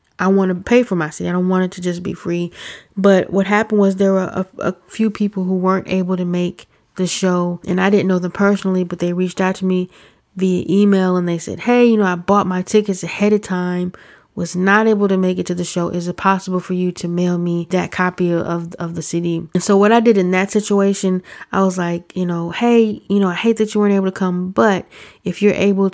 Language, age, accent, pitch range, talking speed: English, 20-39, American, 175-195 Hz, 255 wpm